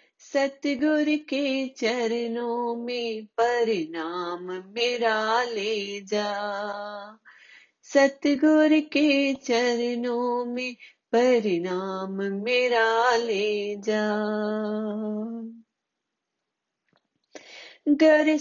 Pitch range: 240-310 Hz